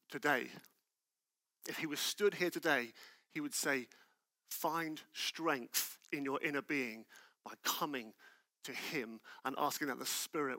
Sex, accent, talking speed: male, British, 140 wpm